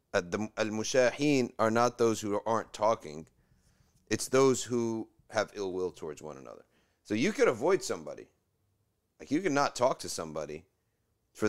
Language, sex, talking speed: English, male, 150 wpm